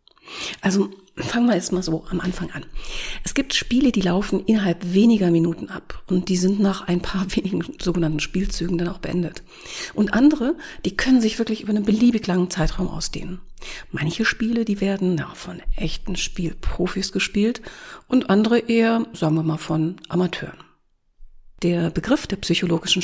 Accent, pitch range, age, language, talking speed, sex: German, 170-200 Hz, 40-59, German, 160 wpm, female